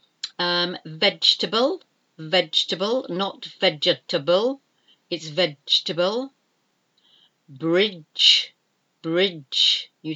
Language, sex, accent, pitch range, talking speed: English, female, British, 165-200 Hz, 60 wpm